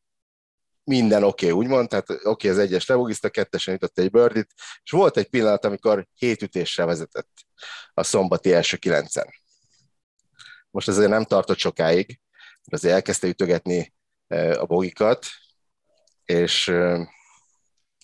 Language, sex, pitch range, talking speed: Hungarian, male, 90-120 Hz, 125 wpm